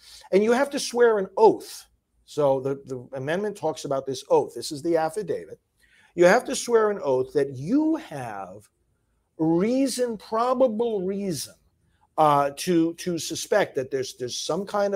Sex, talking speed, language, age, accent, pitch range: male, 160 wpm, English, 50-69, American, 130-220 Hz